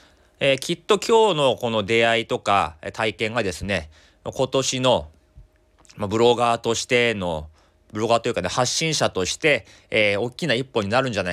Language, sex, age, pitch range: Japanese, male, 30-49, 90-130 Hz